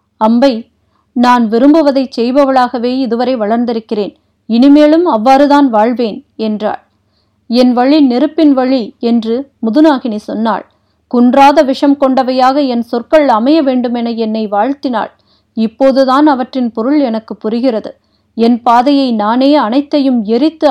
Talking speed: 105 wpm